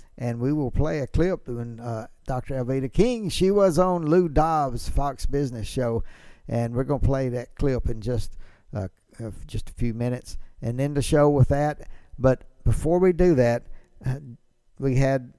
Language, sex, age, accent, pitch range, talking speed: English, male, 60-79, American, 120-155 Hz, 175 wpm